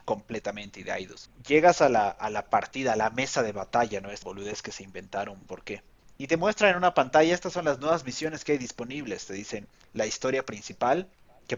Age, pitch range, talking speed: 30-49, 115-150 Hz, 205 wpm